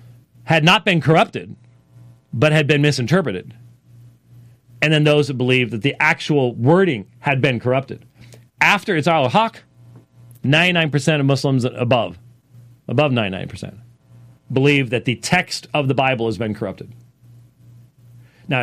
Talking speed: 130 wpm